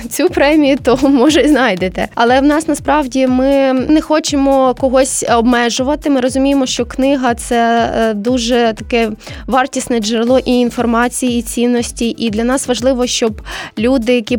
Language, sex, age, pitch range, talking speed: Ukrainian, female, 20-39, 235-270 Hz, 145 wpm